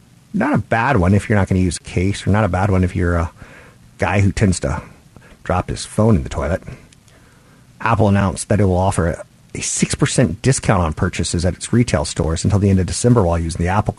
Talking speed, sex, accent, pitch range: 230 wpm, male, American, 90-110 Hz